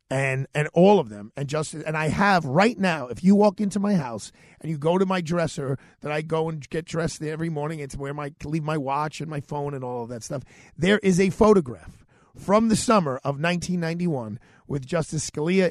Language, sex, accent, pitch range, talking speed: English, male, American, 140-190 Hz, 220 wpm